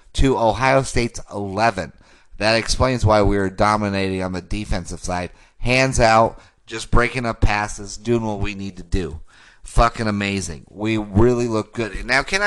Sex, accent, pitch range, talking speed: male, American, 95-120 Hz, 165 wpm